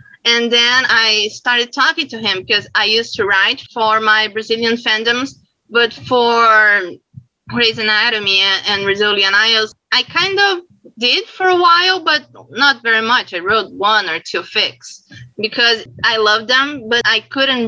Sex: female